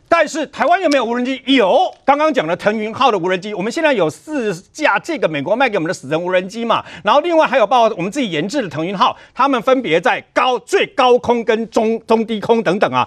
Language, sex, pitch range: Chinese, male, 210-295 Hz